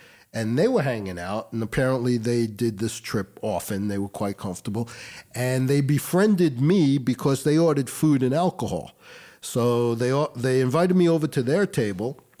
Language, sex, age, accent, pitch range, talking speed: English, male, 50-69, American, 120-155 Hz, 170 wpm